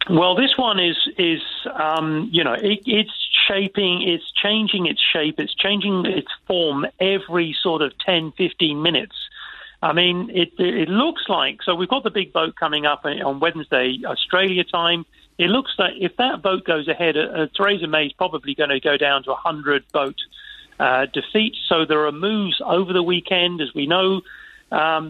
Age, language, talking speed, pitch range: 40-59, English, 180 wpm, 155-195 Hz